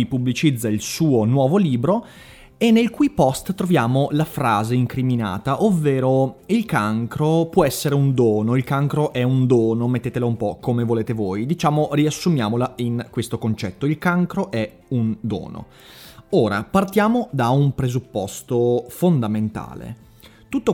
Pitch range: 115-155 Hz